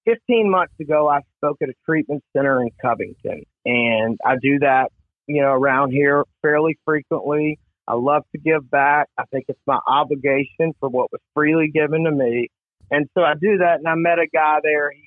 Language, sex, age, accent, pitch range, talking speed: English, male, 40-59, American, 140-175 Hz, 200 wpm